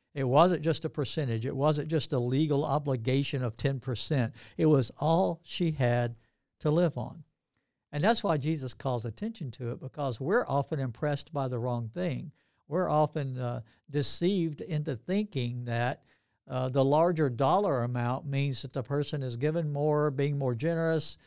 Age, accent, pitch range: 60-79, American, 125-155 Hz